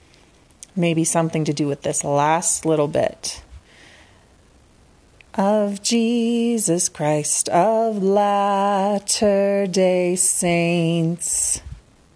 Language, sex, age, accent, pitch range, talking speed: English, female, 30-49, American, 150-200 Hz, 75 wpm